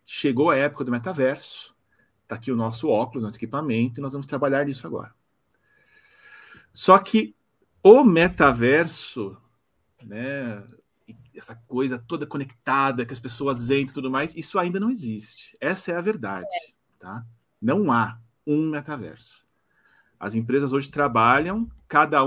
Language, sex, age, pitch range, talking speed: Portuguese, male, 40-59, 115-170 Hz, 140 wpm